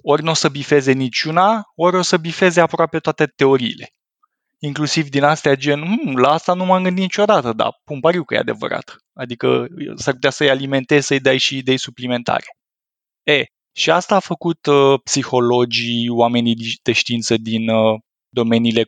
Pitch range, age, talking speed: 120-155 Hz, 20-39, 170 wpm